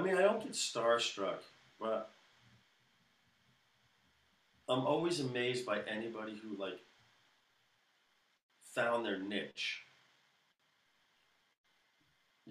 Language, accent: English, American